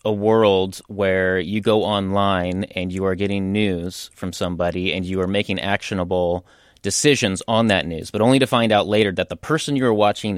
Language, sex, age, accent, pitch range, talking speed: English, male, 30-49, American, 90-115 Hz, 190 wpm